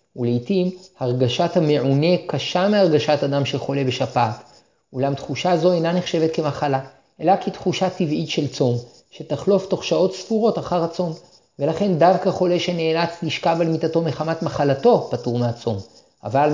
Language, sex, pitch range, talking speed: Hebrew, male, 140-180 Hz, 135 wpm